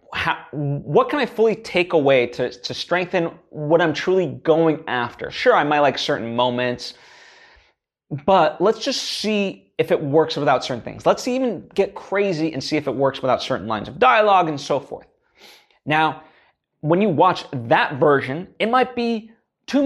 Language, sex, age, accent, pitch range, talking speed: English, male, 20-39, American, 140-200 Hz, 180 wpm